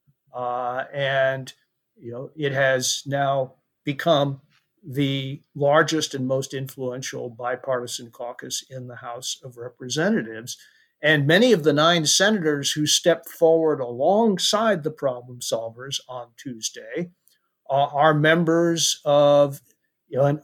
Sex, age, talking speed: male, 50-69, 115 wpm